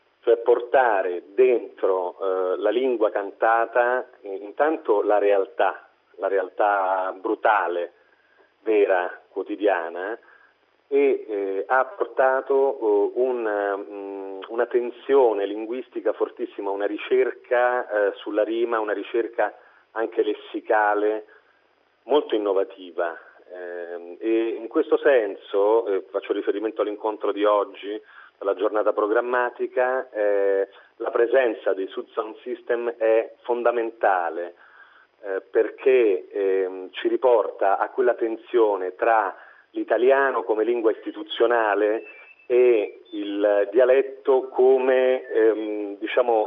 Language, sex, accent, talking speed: Italian, male, native, 100 wpm